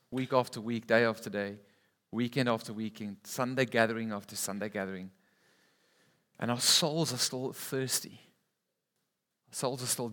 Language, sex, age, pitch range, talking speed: English, male, 40-59, 120-145 Hz, 140 wpm